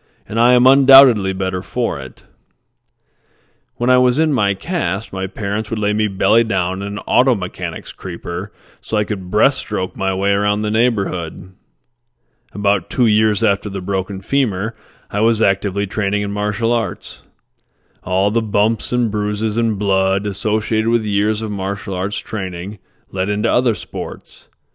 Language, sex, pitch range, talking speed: English, male, 95-120 Hz, 160 wpm